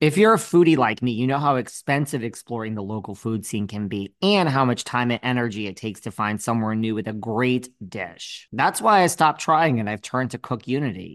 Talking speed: 230 wpm